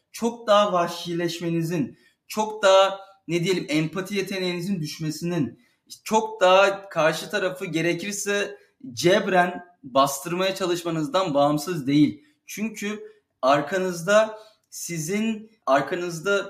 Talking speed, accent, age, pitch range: 85 wpm, native, 30-49, 165-210 Hz